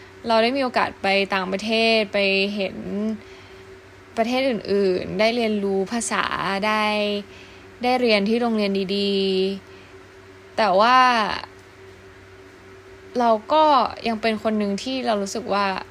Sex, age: female, 10-29